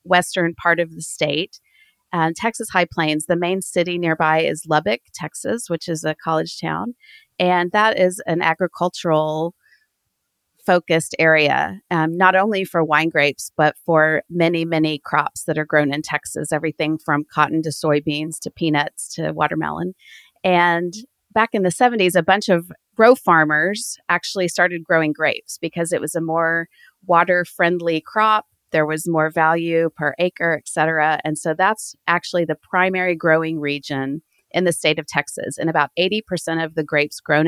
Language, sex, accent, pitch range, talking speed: English, female, American, 155-180 Hz, 165 wpm